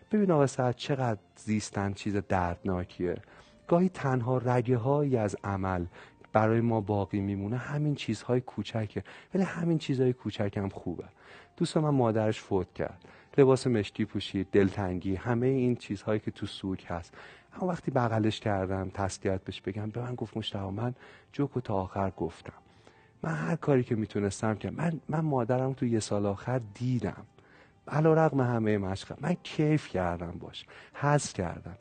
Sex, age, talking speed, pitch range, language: male, 40-59, 155 wpm, 100-130 Hz, Persian